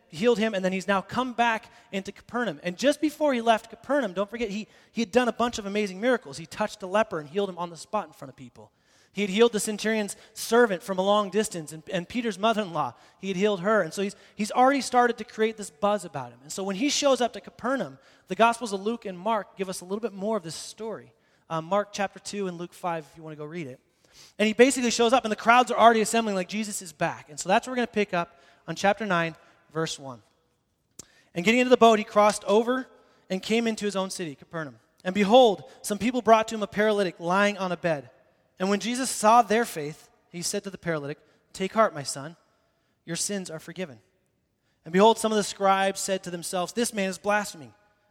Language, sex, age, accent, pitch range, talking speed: English, male, 30-49, American, 165-220 Hz, 245 wpm